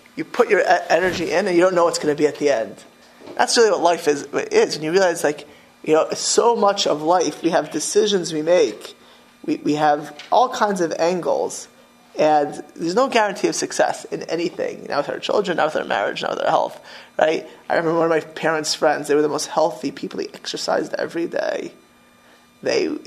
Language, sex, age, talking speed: English, male, 20-39, 215 wpm